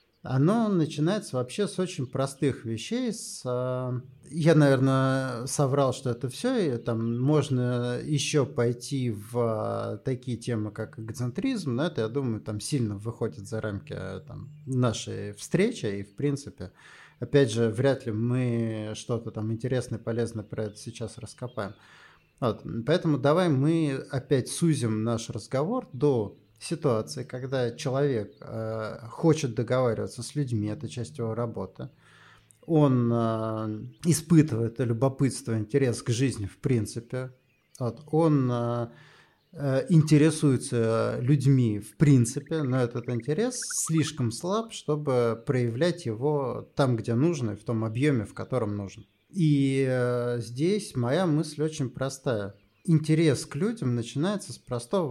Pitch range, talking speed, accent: 115-145 Hz, 125 wpm, native